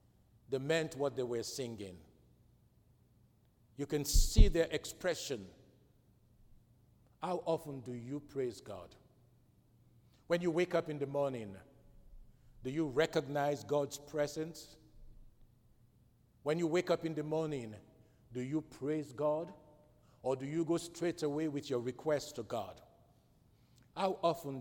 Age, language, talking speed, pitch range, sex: 50-69, English, 130 wpm, 120-170 Hz, male